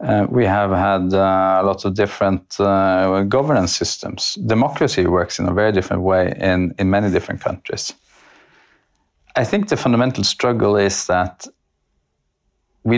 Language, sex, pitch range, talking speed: English, male, 95-110 Hz, 145 wpm